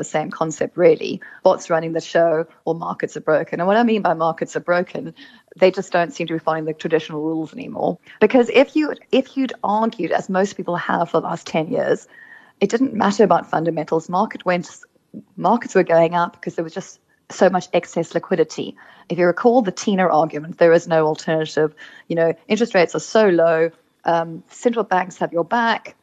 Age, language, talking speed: 30-49, English, 205 wpm